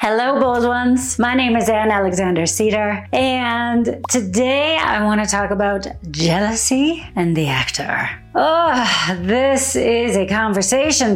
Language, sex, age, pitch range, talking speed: English, female, 40-59, 195-265 Hz, 135 wpm